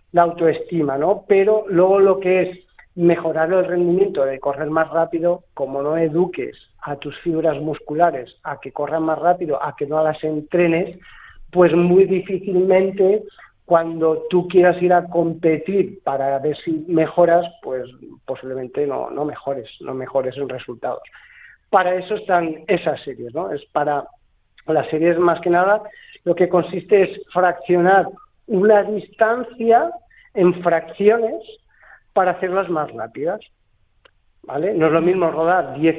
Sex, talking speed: male, 145 wpm